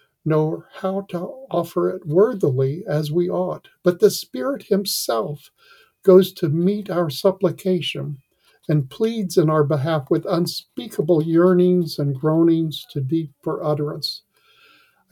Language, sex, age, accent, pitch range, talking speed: English, male, 60-79, American, 150-185 Hz, 130 wpm